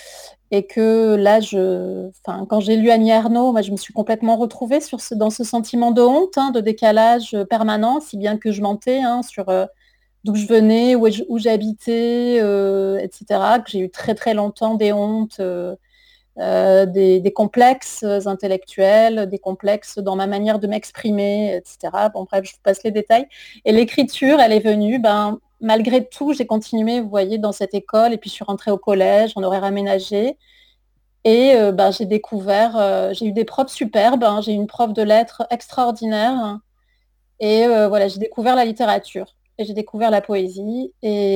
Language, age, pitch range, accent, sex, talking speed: French, 30-49, 200-235 Hz, French, female, 180 wpm